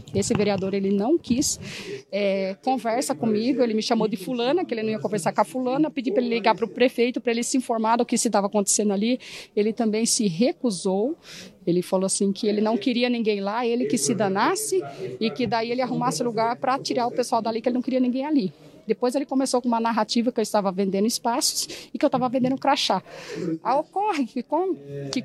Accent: Brazilian